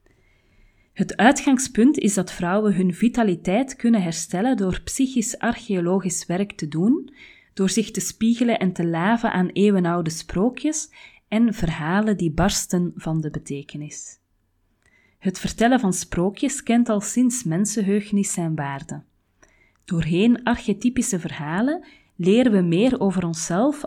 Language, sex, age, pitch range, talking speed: Dutch, female, 30-49, 170-230 Hz, 125 wpm